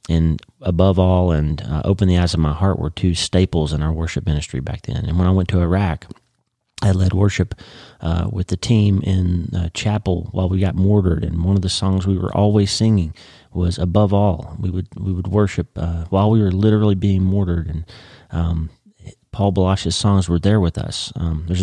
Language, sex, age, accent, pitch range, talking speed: English, male, 30-49, American, 85-100 Hz, 210 wpm